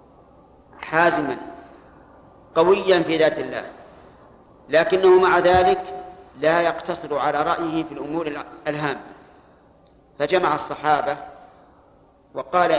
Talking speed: 85 wpm